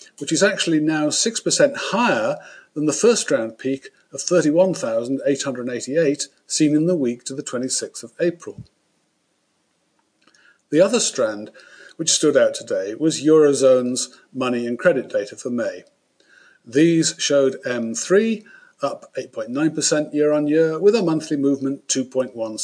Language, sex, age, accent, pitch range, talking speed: English, male, 50-69, British, 130-190 Hz, 125 wpm